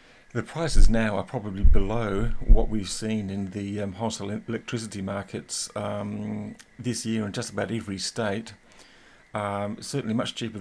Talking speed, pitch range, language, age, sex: 155 wpm, 100-120 Hz, English, 50-69, male